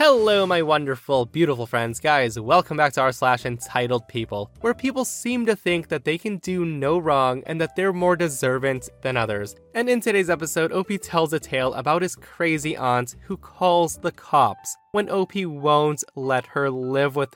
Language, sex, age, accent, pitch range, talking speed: English, male, 20-39, American, 120-170 Hz, 185 wpm